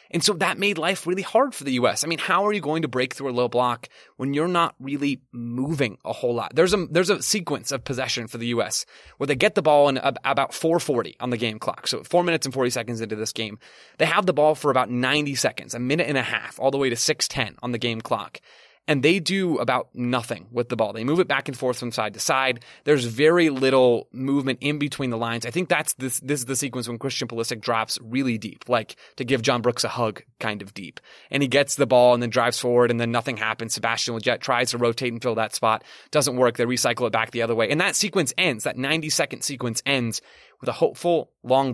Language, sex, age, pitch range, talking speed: English, male, 30-49, 120-150 Hz, 255 wpm